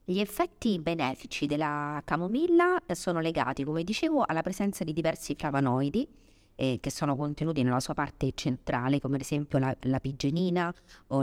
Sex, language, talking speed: female, Italian, 155 wpm